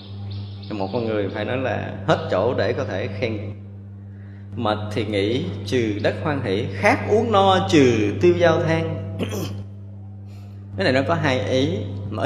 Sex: male